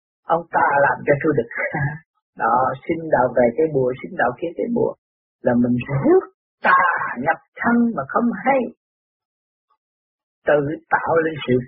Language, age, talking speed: Vietnamese, 50-69, 155 wpm